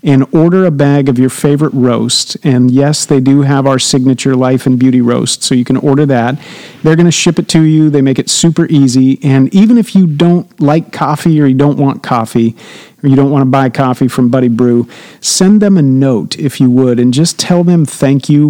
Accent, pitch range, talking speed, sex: American, 130-160 Hz, 230 wpm, male